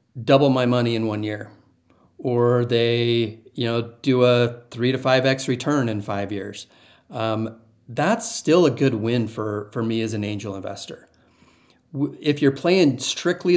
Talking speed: 165 wpm